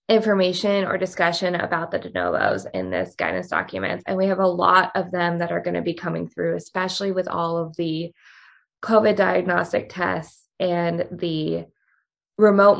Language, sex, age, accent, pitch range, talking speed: English, female, 20-39, American, 175-215 Hz, 170 wpm